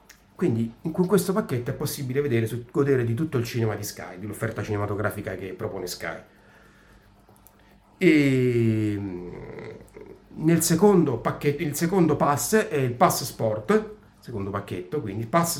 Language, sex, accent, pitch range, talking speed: Italian, male, native, 105-140 Hz, 130 wpm